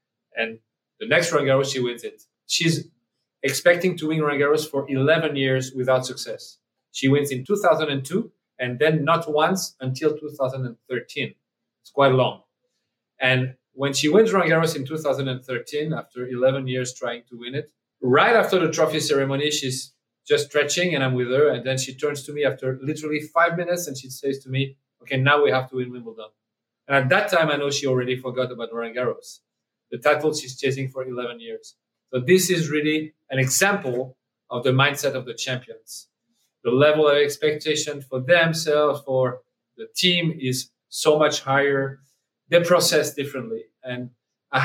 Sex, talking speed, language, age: male, 170 wpm, English, 40-59